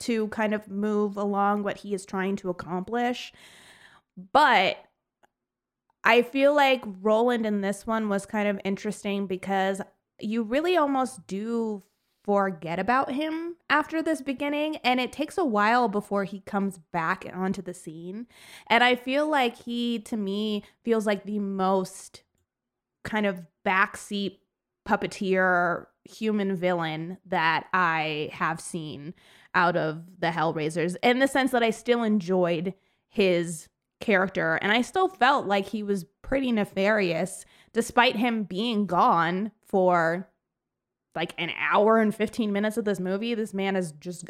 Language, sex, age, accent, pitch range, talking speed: English, female, 20-39, American, 180-230 Hz, 145 wpm